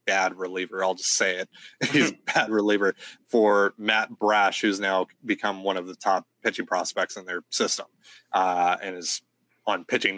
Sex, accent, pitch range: male, American, 95-110 Hz